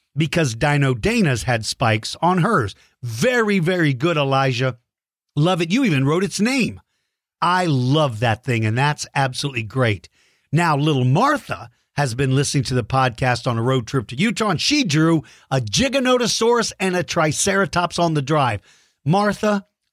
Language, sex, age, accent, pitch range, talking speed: English, male, 50-69, American, 125-185 Hz, 160 wpm